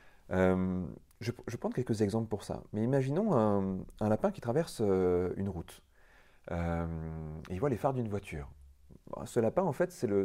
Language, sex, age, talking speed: French, male, 30-49, 200 wpm